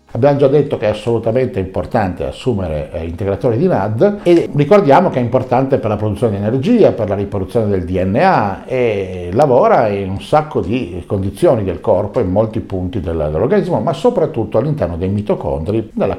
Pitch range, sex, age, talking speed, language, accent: 100-145 Hz, male, 50-69, 170 wpm, Italian, native